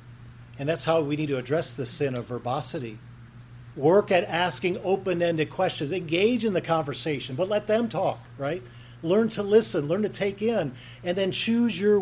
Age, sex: 50-69, male